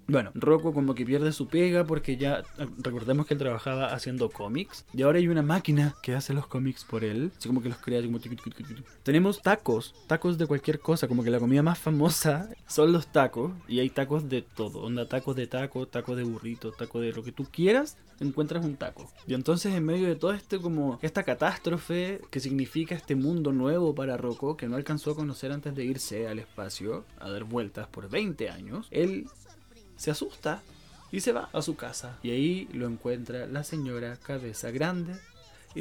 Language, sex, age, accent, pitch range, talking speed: Spanish, male, 20-39, Argentinian, 120-170 Hz, 210 wpm